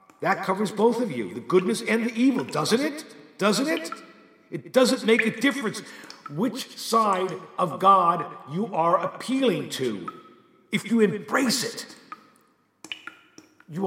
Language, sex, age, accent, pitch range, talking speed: English, male, 50-69, American, 190-250 Hz, 140 wpm